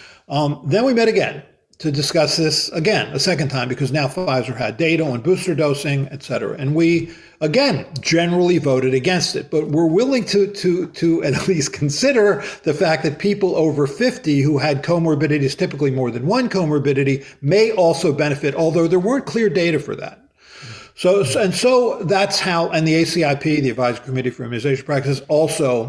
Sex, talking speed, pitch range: male, 175 wpm, 140-180 Hz